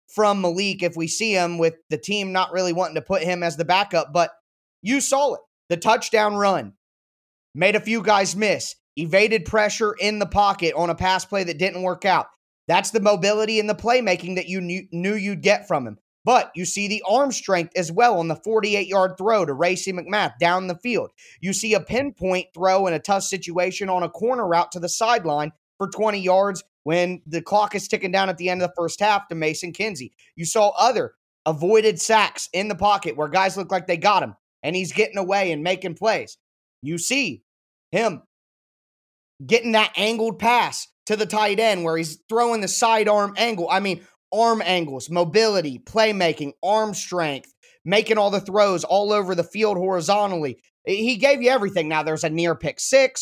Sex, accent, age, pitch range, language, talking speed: male, American, 20-39, 175-215 Hz, English, 200 wpm